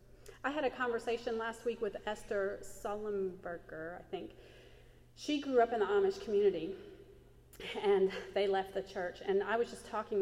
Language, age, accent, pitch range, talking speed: English, 40-59, American, 175-240 Hz, 165 wpm